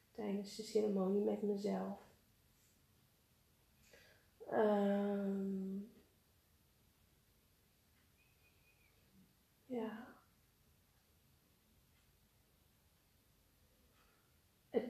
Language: Dutch